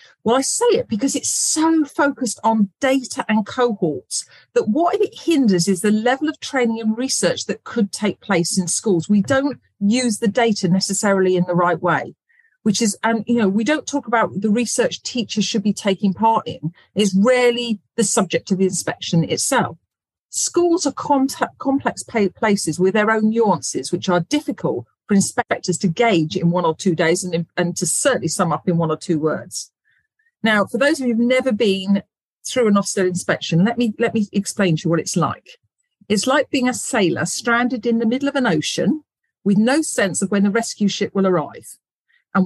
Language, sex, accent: English, female, British